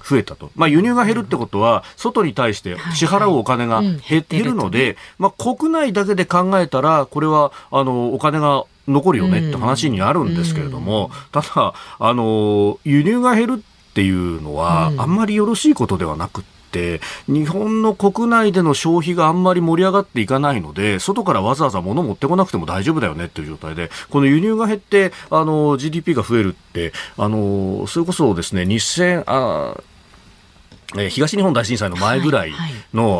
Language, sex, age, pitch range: Japanese, male, 40-59, 100-170 Hz